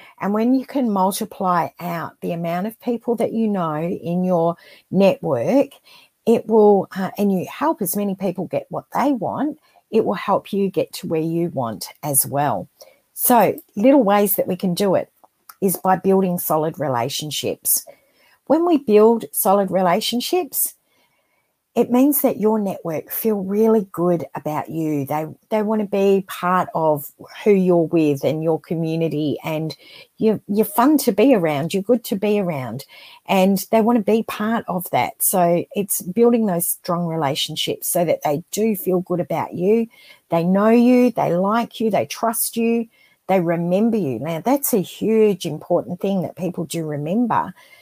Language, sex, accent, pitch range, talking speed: English, female, Australian, 170-225 Hz, 170 wpm